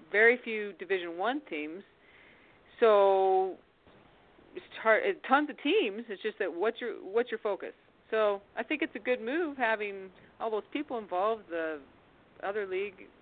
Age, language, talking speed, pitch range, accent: 40-59, English, 160 wpm, 170-225 Hz, American